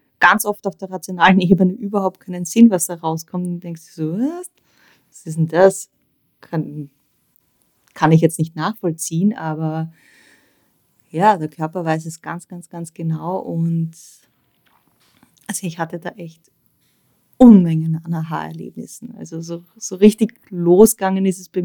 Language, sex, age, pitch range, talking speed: German, female, 20-39, 160-185 Hz, 145 wpm